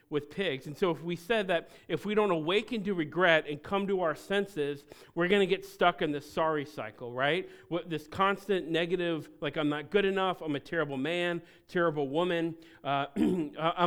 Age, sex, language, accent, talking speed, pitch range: 40-59, male, English, American, 190 wpm, 145-175 Hz